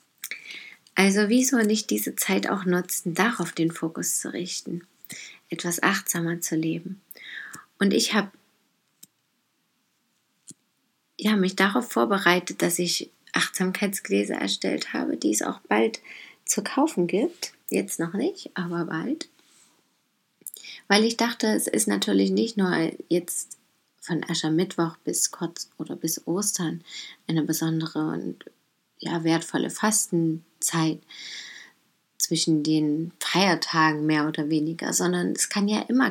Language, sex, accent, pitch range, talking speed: German, female, German, 165-200 Hz, 120 wpm